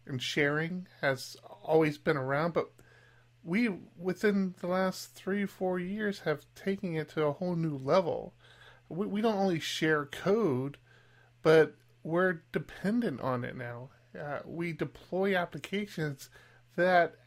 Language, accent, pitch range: English, American, 145-195 Hz